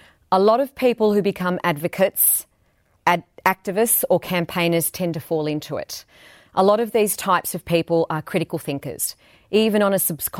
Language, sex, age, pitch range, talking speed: English, female, 40-59, 150-190 Hz, 175 wpm